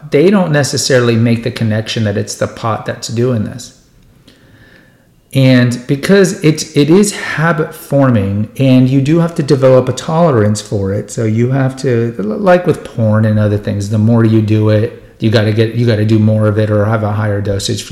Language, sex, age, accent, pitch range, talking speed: English, male, 40-59, American, 105-130 Hz, 205 wpm